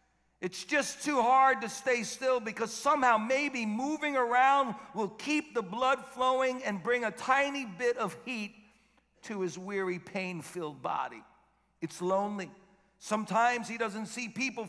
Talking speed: 145 wpm